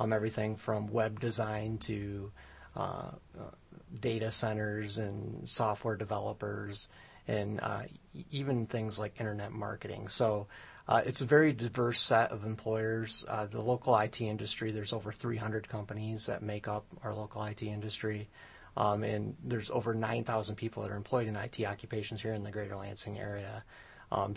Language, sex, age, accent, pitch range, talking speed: English, male, 30-49, American, 105-115 Hz, 160 wpm